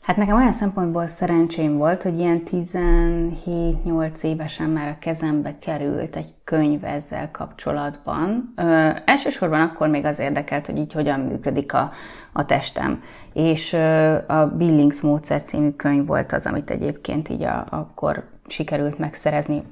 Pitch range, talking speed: 145-185 Hz, 135 wpm